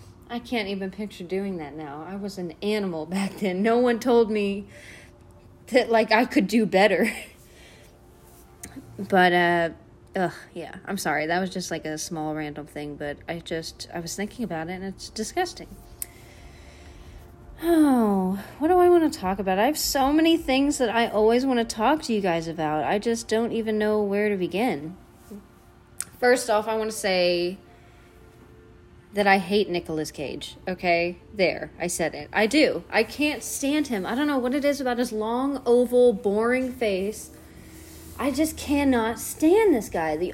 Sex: female